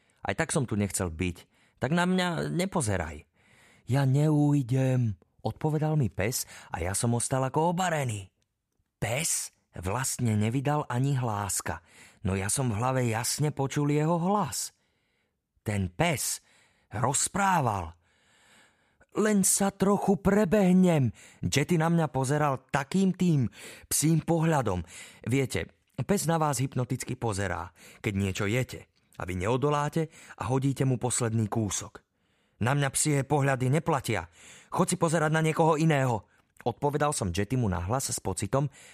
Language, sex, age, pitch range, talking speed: Slovak, male, 30-49, 100-145 Hz, 125 wpm